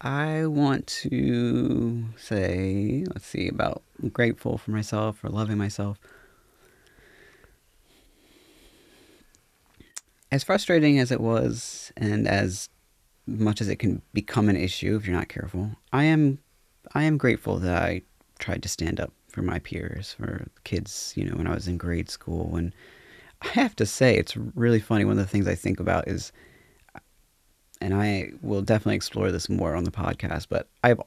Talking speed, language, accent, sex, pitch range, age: 160 wpm, English, American, male, 95-115 Hz, 30-49